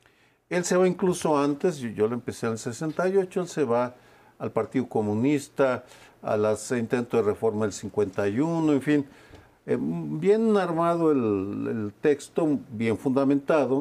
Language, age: Spanish, 50-69